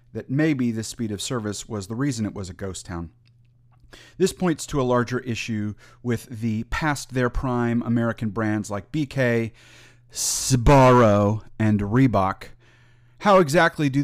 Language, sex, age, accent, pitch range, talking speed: English, male, 30-49, American, 110-135 Hz, 140 wpm